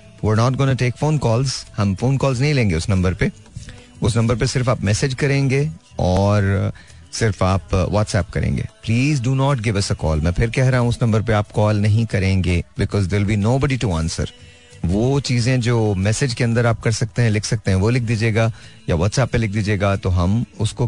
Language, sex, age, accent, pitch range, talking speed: Hindi, male, 30-49, native, 100-120 Hz, 200 wpm